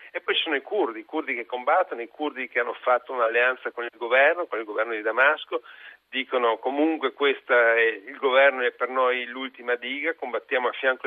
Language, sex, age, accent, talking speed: Italian, male, 40-59, native, 205 wpm